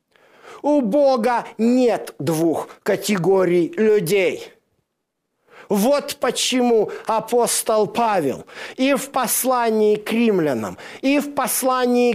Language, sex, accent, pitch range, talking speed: Russian, male, native, 210-255 Hz, 90 wpm